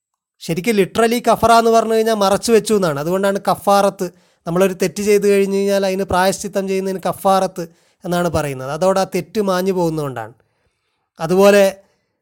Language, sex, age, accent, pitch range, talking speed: Malayalam, male, 30-49, native, 170-205 Hz, 125 wpm